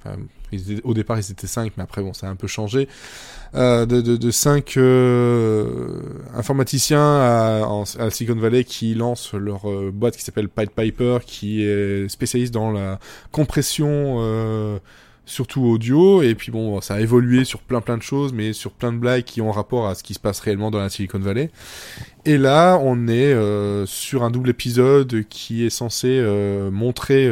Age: 20-39